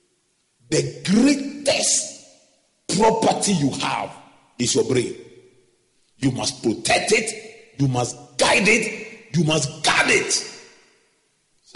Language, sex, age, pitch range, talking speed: English, male, 40-59, 140-220 Hz, 105 wpm